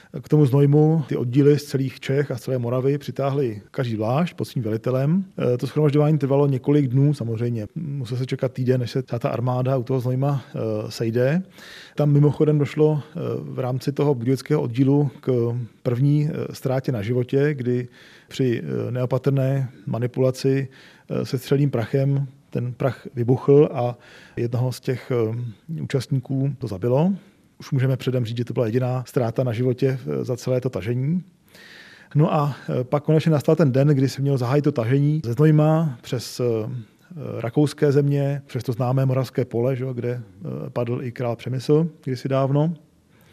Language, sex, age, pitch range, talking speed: Czech, male, 40-59, 125-145 Hz, 155 wpm